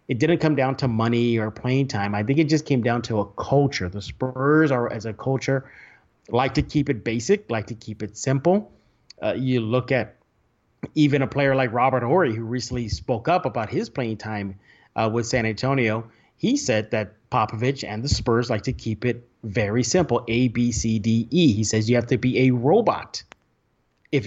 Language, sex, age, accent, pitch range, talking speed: English, male, 30-49, American, 115-140 Hz, 205 wpm